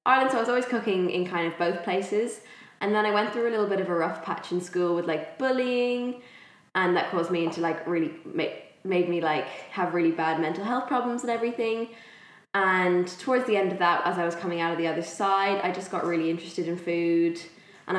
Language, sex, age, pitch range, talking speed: English, female, 10-29, 165-200 Hz, 235 wpm